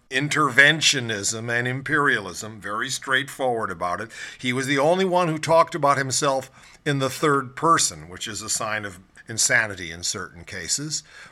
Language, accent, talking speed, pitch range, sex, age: English, American, 155 wpm, 105-150 Hz, male, 50-69